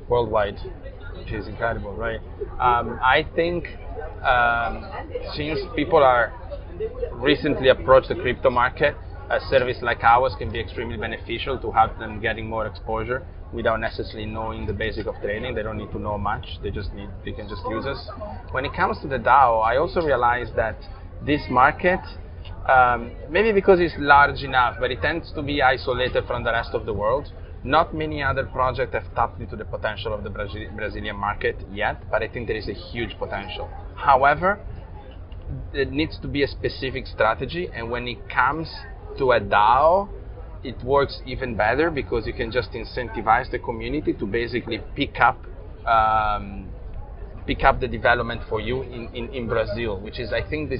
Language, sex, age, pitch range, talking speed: English, male, 20-39, 100-125 Hz, 180 wpm